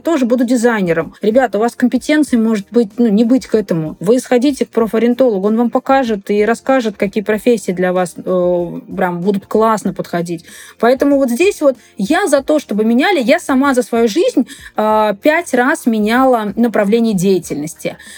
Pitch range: 205-255 Hz